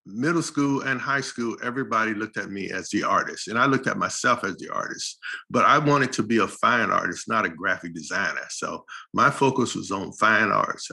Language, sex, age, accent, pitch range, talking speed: English, male, 50-69, American, 110-135 Hz, 215 wpm